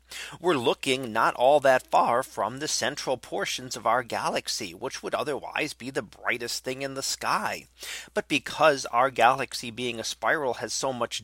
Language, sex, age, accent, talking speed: English, male, 40-59, American, 175 wpm